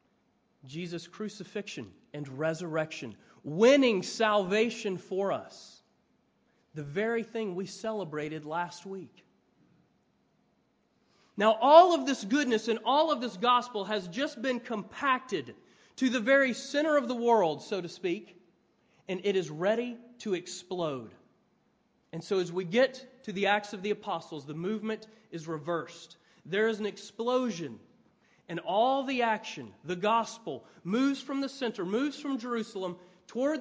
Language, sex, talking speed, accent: English, male, 140 wpm, American